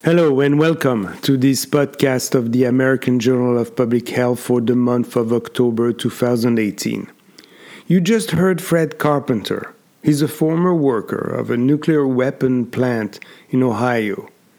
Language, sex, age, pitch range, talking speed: English, male, 50-69, 125-165 Hz, 145 wpm